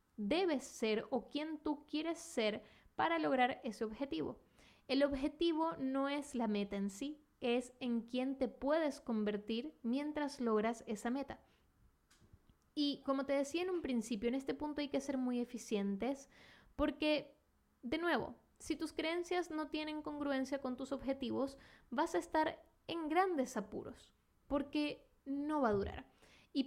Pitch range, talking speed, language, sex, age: 235-295 Hz, 155 wpm, Spanish, female, 10-29